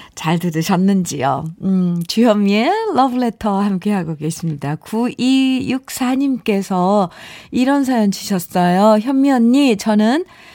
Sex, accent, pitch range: female, native, 190-275 Hz